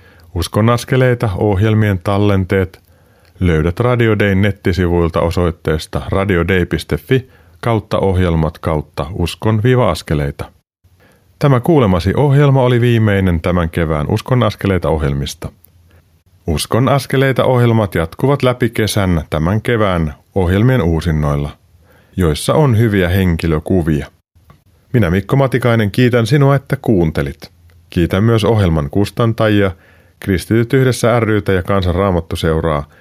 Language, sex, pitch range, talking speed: Finnish, male, 85-115 Hz, 100 wpm